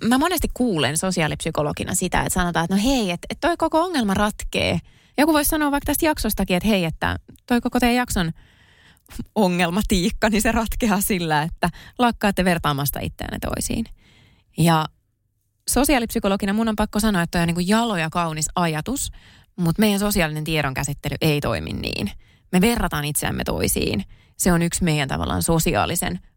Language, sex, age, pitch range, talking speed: Finnish, female, 20-39, 150-225 Hz, 160 wpm